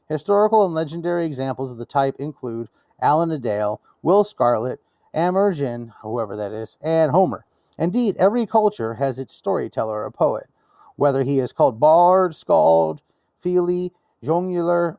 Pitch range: 115-170 Hz